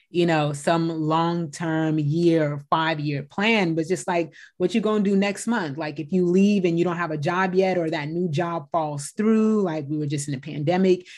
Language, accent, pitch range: English, American, 150-175 Hz